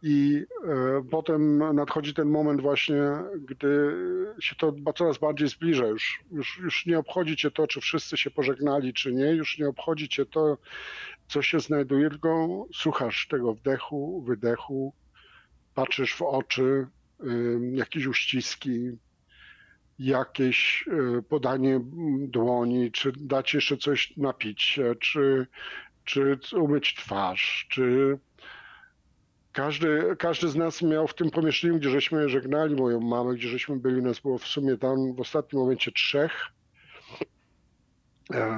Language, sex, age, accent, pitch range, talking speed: Polish, male, 50-69, native, 125-155 Hz, 130 wpm